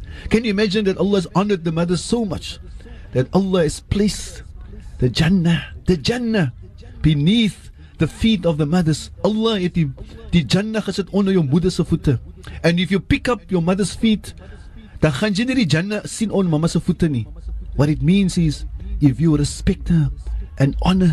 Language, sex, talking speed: English, male, 140 wpm